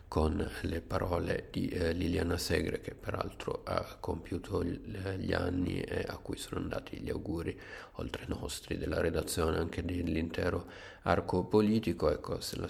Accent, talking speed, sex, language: native, 155 wpm, male, Italian